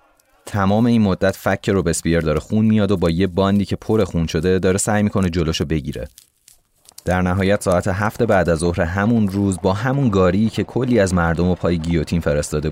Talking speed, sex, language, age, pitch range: 200 wpm, male, Persian, 30-49, 85-105 Hz